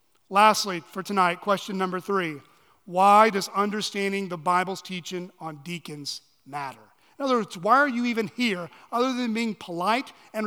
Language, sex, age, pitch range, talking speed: English, male, 40-59, 185-240 Hz, 160 wpm